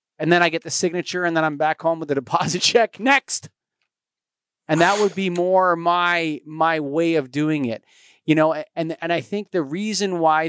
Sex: male